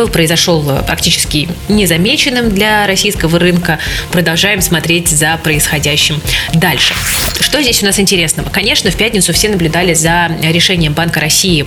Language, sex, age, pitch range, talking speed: Russian, female, 20-39, 160-190 Hz, 130 wpm